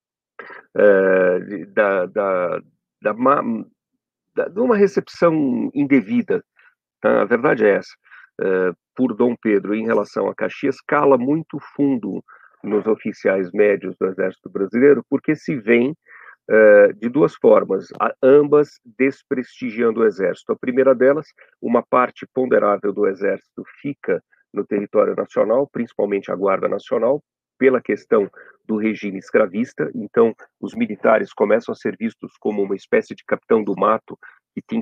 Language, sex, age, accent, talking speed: Portuguese, male, 50-69, Brazilian, 135 wpm